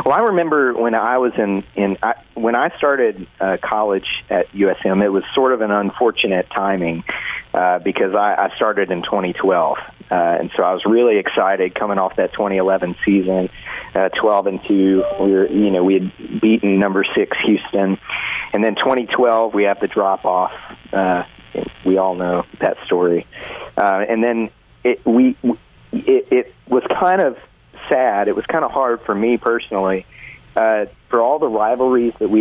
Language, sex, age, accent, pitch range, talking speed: English, male, 40-59, American, 95-115 Hz, 180 wpm